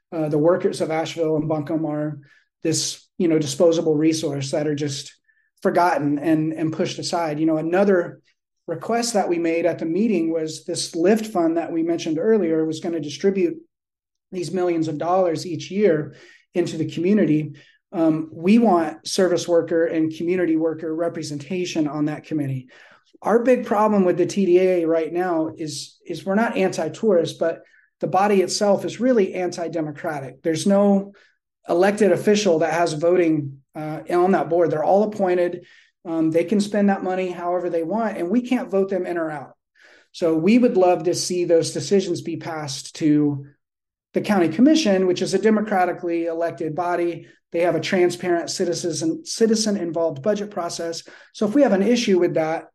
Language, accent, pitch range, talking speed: English, American, 160-190 Hz, 170 wpm